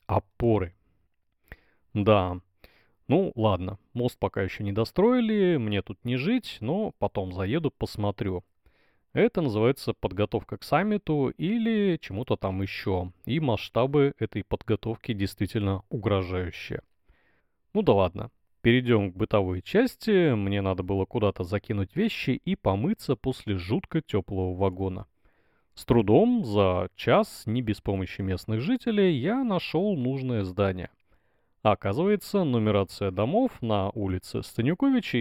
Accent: native